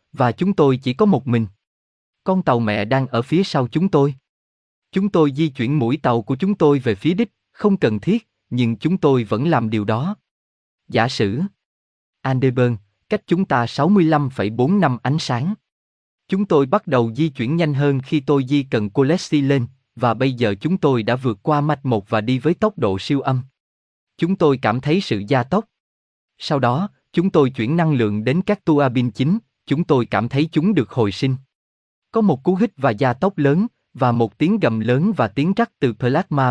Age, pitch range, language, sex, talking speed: 20-39, 115-160 Hz, Vietnamese, male, 200 wpm